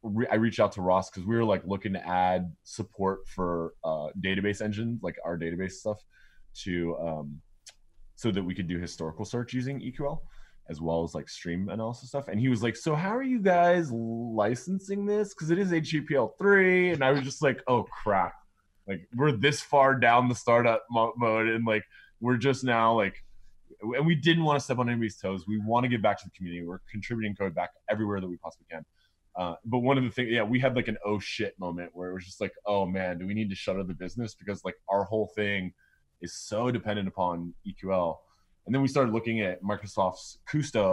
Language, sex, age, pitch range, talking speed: English, male, 20-39, 90-120 Hz, 215 wpm